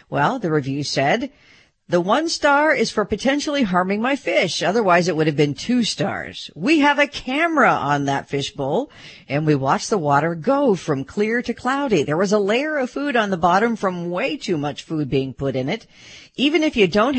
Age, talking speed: 50-69, 210 wpm